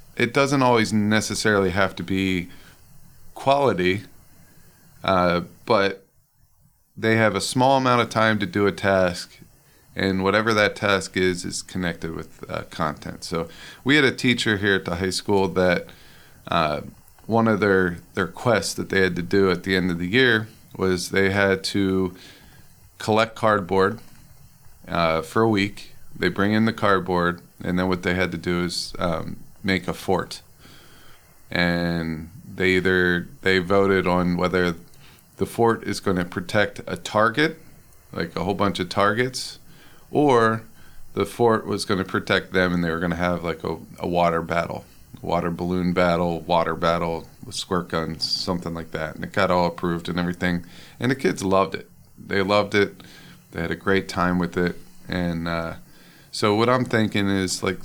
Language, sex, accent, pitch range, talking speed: English, male, American, 90-105 Hz, 175 wpm